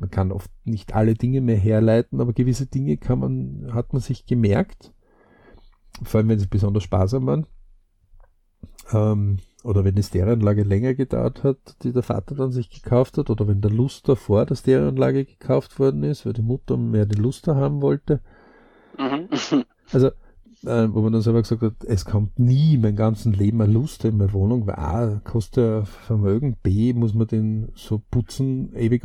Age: 50-69